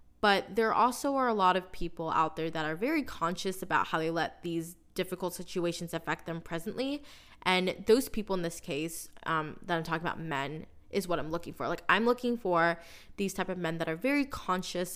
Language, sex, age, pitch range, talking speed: English, female, 20-39, 165-200 Hz, 215 wpm